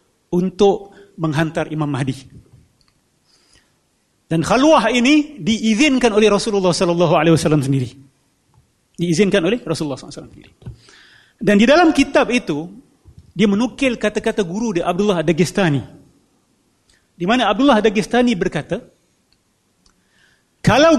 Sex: male